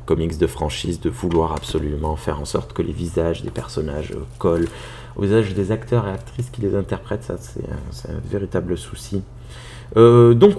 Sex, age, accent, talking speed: male, 30-49, French, 185 wpm